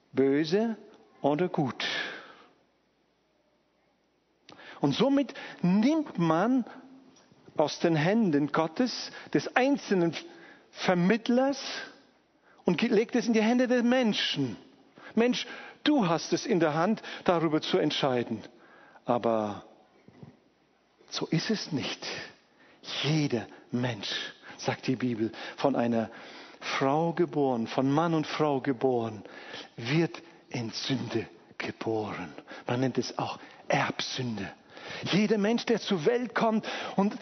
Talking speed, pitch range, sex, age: 110 wpm, 150-250 Hz, male, 50-69